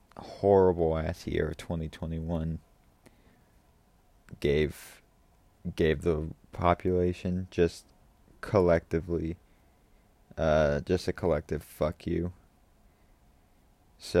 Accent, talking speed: American, 75 wpm